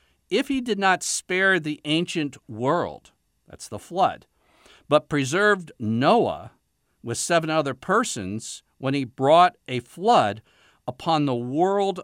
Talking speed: 130 wpm